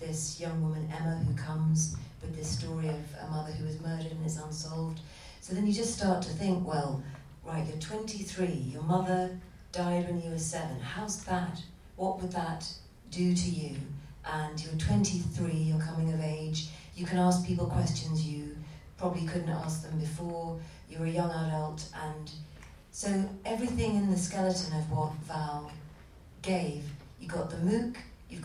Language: English